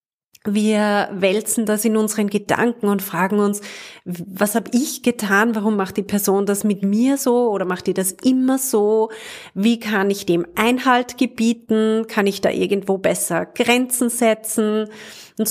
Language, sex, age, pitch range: German, female, 30-49, 195-245 Hz